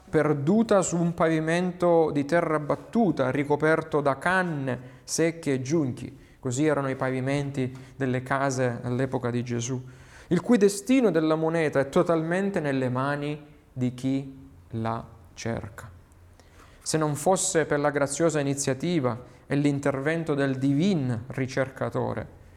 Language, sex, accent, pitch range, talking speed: Italian, male, native, 125-160 Hz, 125 wpm